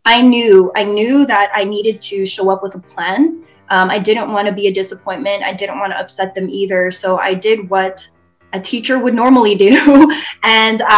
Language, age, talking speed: English, 10-29, 210 wpm